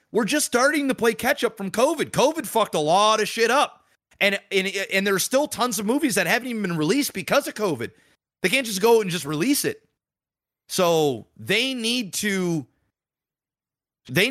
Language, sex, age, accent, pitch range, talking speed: English, male, 30-49, American, 130-195 Hz, 190 wpm